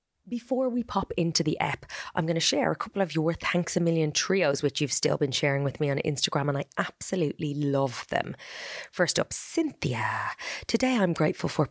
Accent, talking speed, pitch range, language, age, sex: Irish, 200 wpm, 135-170 Hz, English, 20-39, female